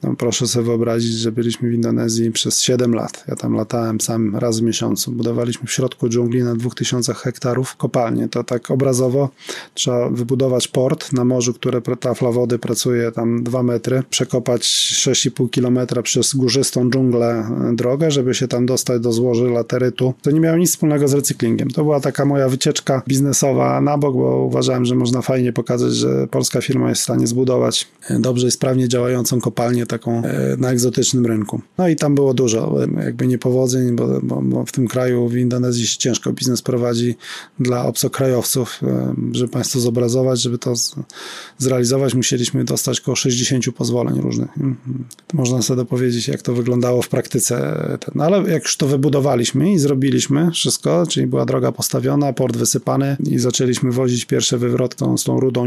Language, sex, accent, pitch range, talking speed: Polish, male, native, 120-130 Hz, 175 wpm